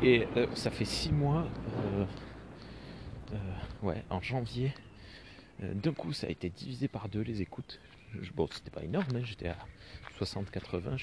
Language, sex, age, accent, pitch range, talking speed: French, male, 30-49, French, 95-120 Hz, 170 wpm